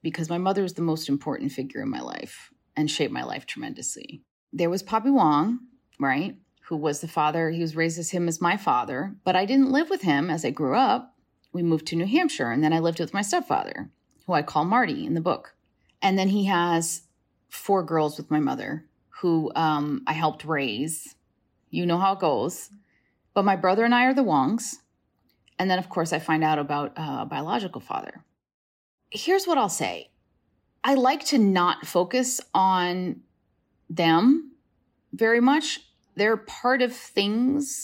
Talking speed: 185 wpm